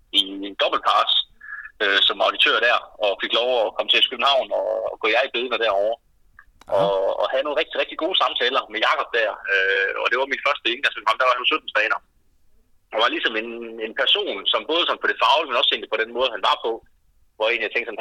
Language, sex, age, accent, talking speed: Danish, male, 30-49, native, 220 wpm